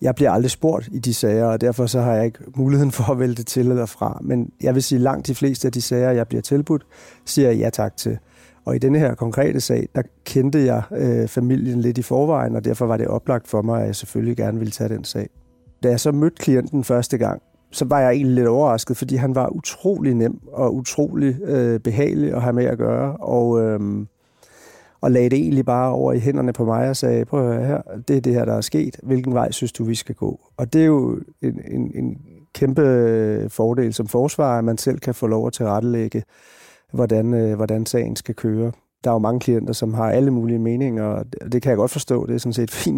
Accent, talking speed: native, 240 wpm